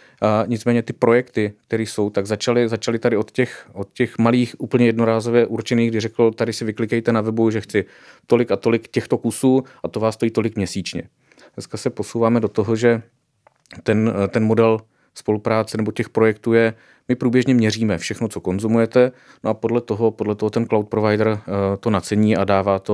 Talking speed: 180 wpm